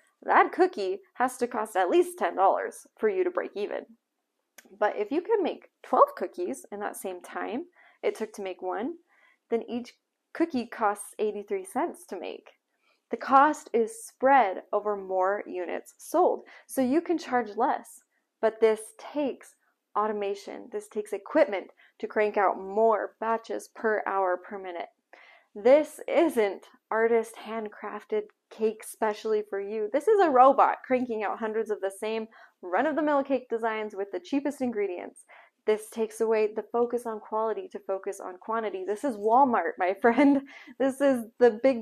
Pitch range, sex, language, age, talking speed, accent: 210-285 Hz, female, English, 20-39, 160 wpm, American